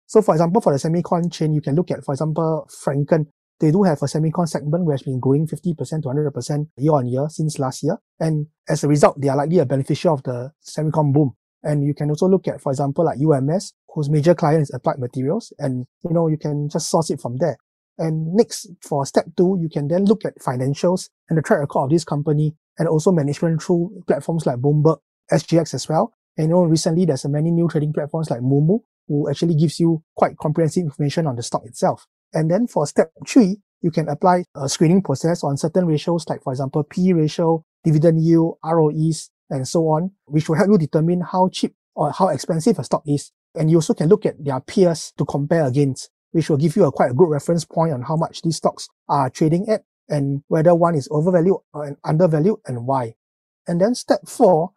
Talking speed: 220 wpm